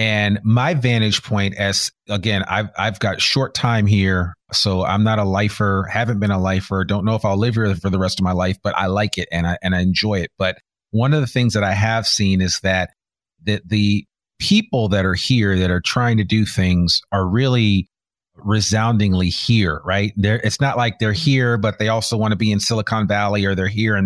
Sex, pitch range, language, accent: male, 95-110 Hz, English, American